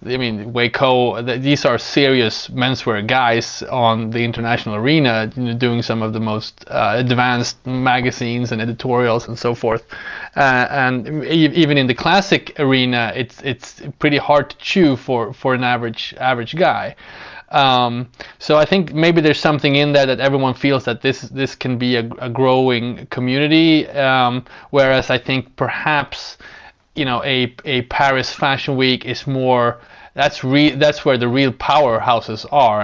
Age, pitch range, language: 20-39, 120-140 Hz, English